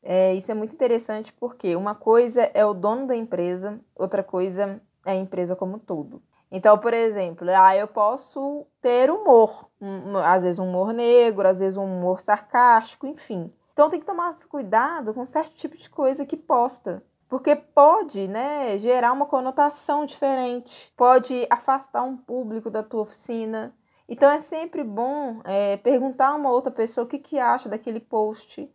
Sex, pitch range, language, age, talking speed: female, 205-260 Hz, Portuguese, 20-39, 175 wpm